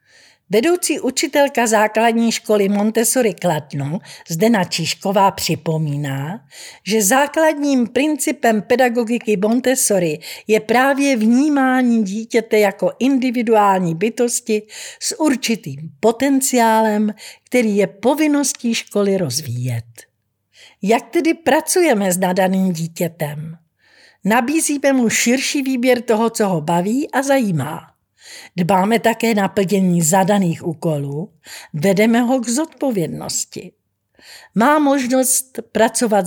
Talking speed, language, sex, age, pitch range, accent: 95 wpm, Czech, female, 50-69, 185-255 Hz, native